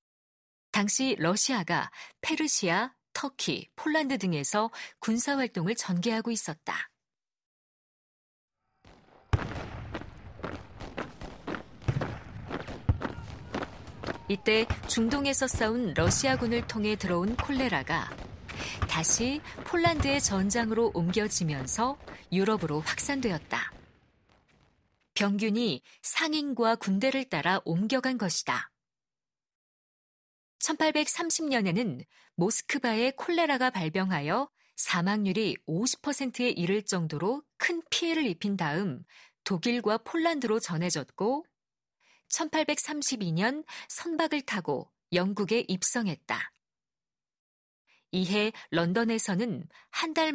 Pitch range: 180-265 Hz